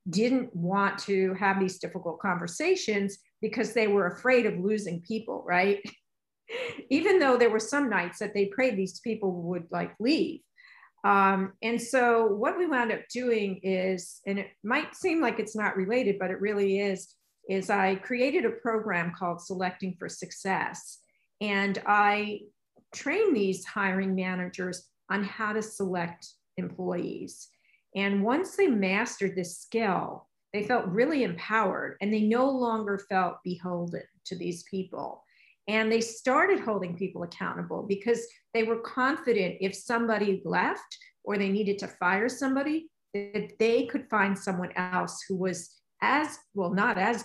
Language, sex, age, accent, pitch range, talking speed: English, female, 50-69, American, 190-235 Hz, 150 wpm